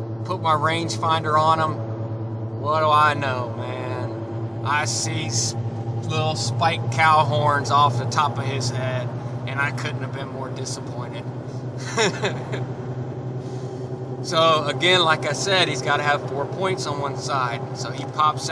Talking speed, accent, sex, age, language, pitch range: 150 wpm, American, male, 20-39, English, 130-145 Hz